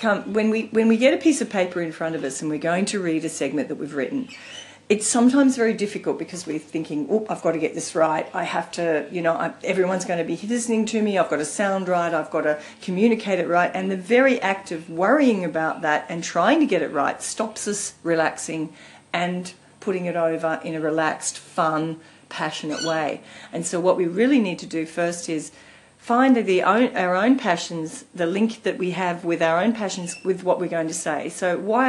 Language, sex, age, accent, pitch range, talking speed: English, female, 40-59, Australian, 160-210 Hz, 220 wpm